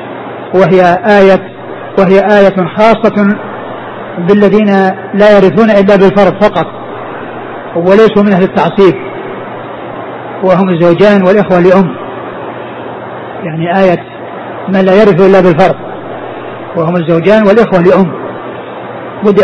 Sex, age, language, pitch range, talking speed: male, 40-59, Arabic, 180-210 Hz, 95 wpm